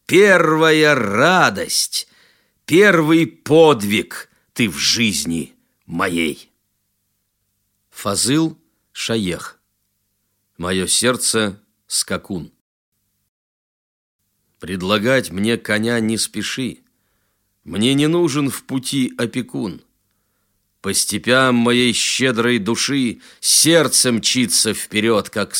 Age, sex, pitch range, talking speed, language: 50-69, male, 105-135 Hz, 75 wpm, Russian